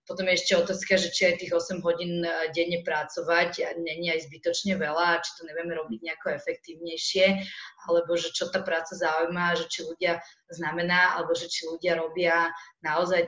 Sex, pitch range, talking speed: female, 165-185 Hz, 175 wpm